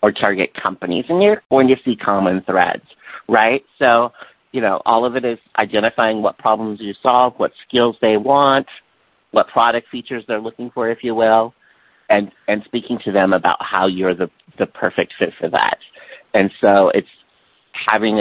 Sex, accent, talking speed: male, American, 180 wpm